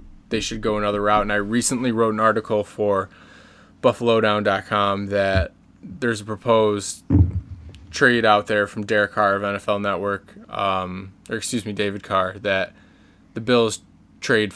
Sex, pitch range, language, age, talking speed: male, 100-115 Hz, English, 20-39, 150 wpm